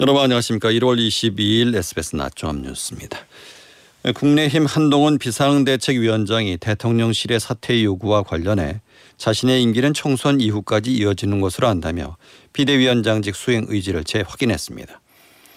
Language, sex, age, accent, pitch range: Korean, male, 40-59, native, 105-130 Hz